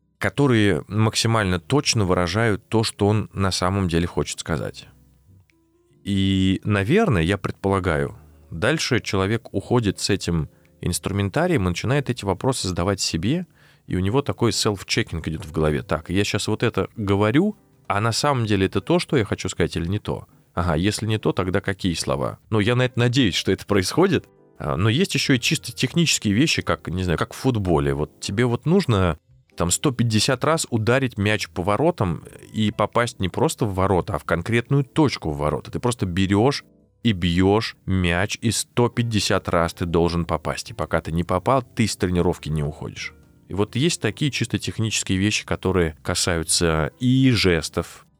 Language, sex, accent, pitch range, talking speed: Russian, male, native, 90-120 Hz, 170 wpm